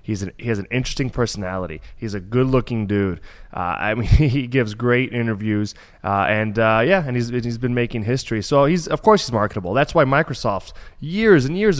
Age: 20-39